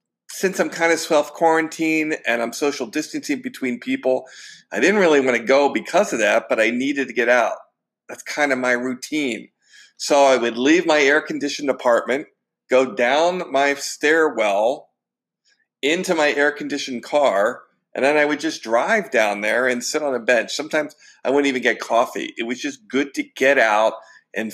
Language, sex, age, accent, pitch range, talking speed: English, male, 50-69, American, 125-160 Hz, 180 wpm